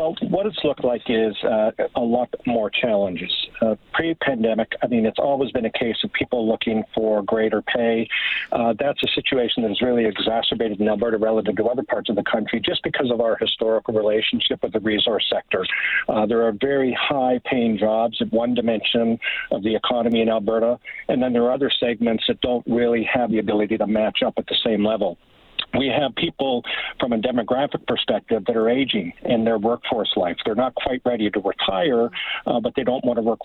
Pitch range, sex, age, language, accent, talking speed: 110-125 Hz, male, 50-69, English, American, 205 wpm